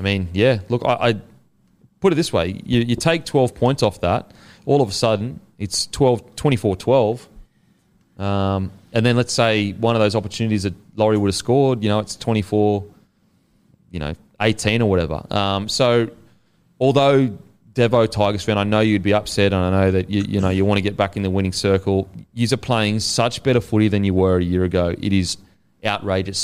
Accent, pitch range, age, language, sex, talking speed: Australian, 100-120 Hz, 30-49, English, male, 195 wpm